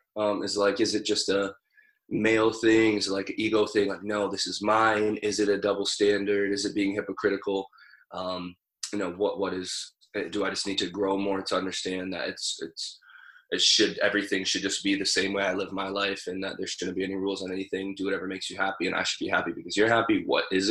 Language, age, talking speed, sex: English, 20-39, 240 wpm, male